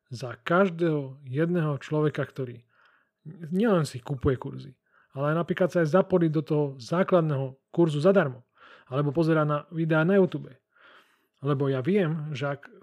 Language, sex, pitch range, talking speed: Slovak, male, 130-170 Hz, 145 wpm